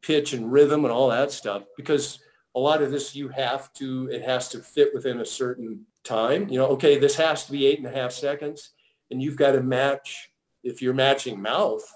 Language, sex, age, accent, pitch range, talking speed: English, male, 50-69, American, 125-145 Hz, 220 wpm